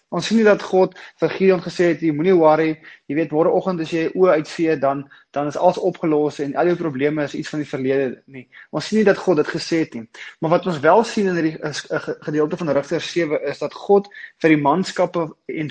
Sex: male